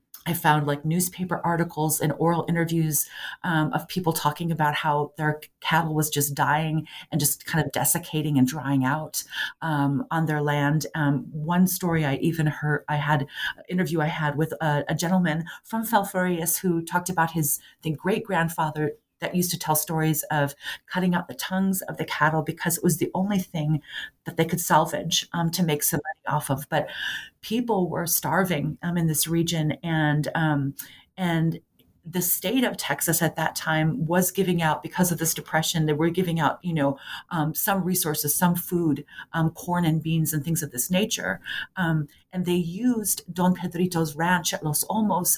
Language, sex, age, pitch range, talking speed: English, female, 40-59, 150-175 Hz, 185 wpm